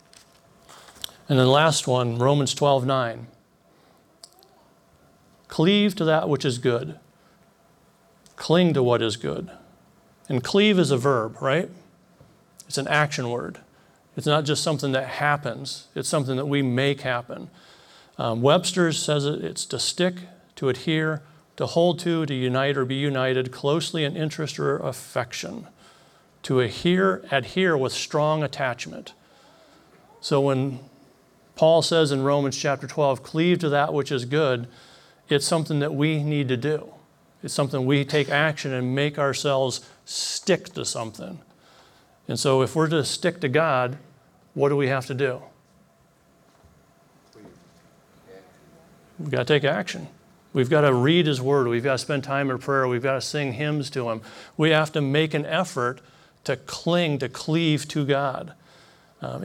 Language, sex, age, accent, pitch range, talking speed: English, male, 40-59, American, 130-155 Hz, 155 wpm